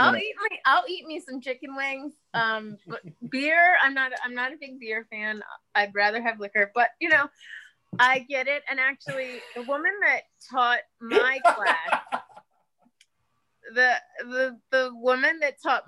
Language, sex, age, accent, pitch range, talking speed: English, female, 30-49, American, 205-260 Hz, 165 wpm